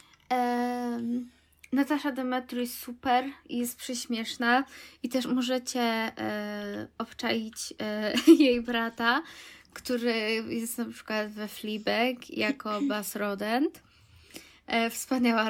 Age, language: 20-39, Polish